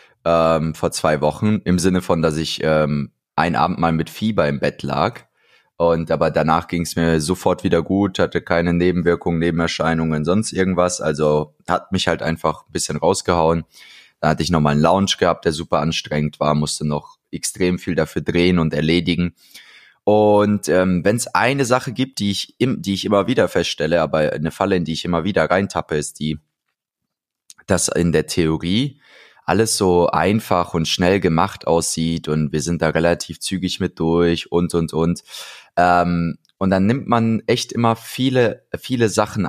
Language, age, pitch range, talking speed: German, 20-39, 80-100 Hz, 180 wpm